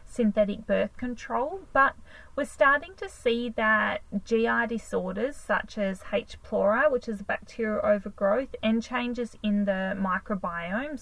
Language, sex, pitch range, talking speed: English, female, 200-235 Hz, 135 wpm